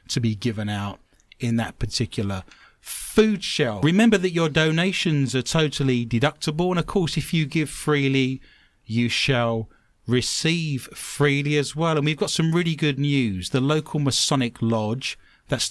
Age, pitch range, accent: 30-49, 115-160 Hz, British